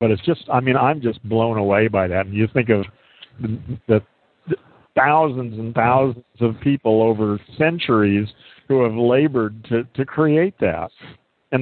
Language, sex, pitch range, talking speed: English, male, 105-135 Hz, 160 wpm